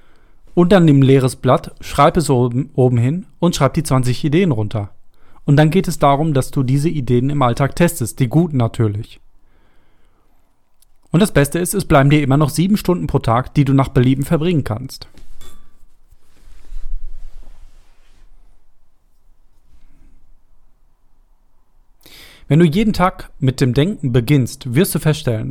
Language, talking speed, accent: German, 145 wpm, German